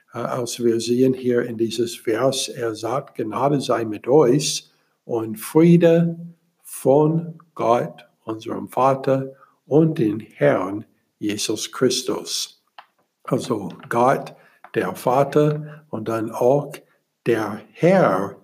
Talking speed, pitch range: 105 wpm, 115-155 Hz